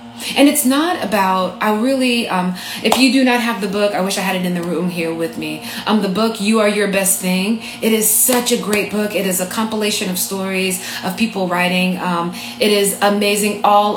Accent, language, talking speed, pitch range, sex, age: American, English, 230 wpm, 175-220 Hz, female, 30-49